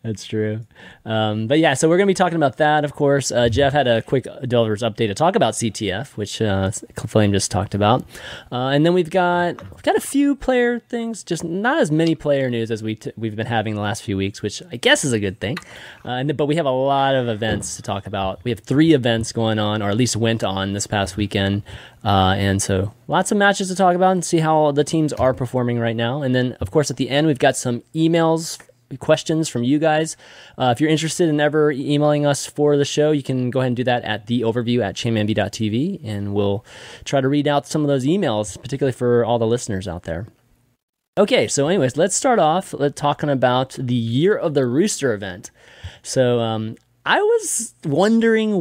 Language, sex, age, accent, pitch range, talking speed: English, male, 30-49, American, 110-150 Hz, 230 wpm